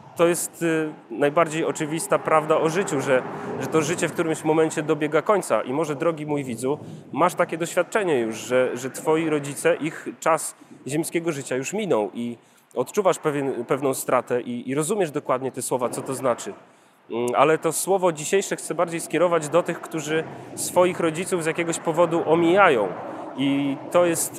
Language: Polish